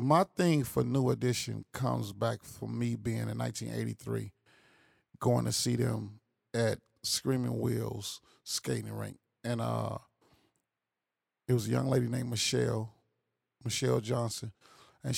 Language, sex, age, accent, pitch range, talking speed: English, male, 30-49, American, 115-135 Hz, 130 wpm